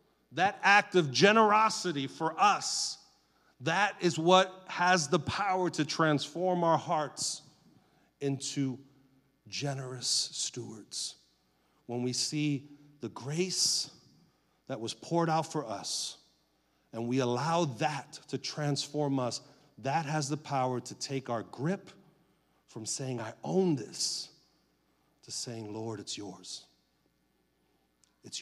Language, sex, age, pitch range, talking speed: English, male, 40-59, 115-150 Hz, 120 wpm